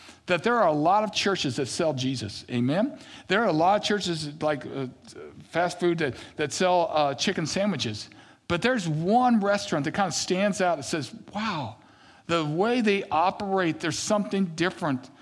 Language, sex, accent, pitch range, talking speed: English, male, American, 155-215 Hz, 180 wpm